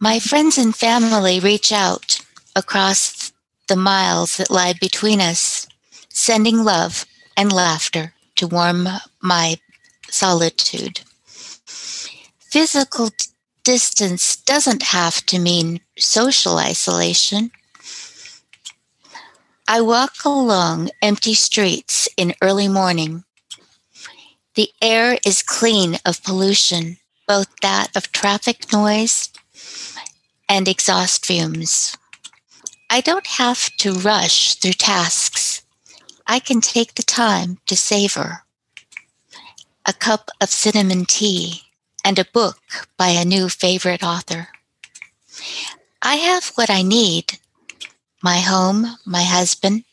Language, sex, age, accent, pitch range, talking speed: English, female, 60-79, American, 180-225 Hz, 105 wpm